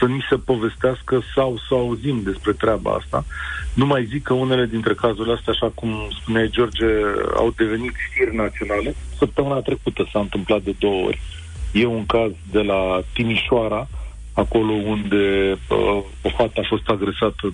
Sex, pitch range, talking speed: male, 105-150 Hz, 160 wpm